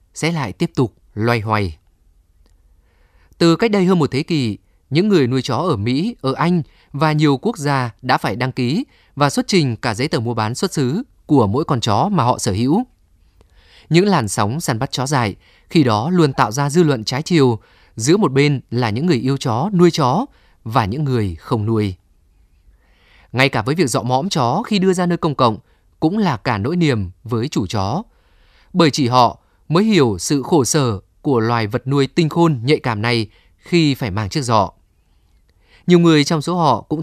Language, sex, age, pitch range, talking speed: Vietnamese, male, 20-39, 110-160 Hz, 205 wpm